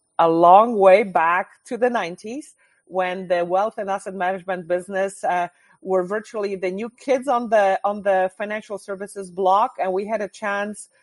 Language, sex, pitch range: English, female, 170-210 Hz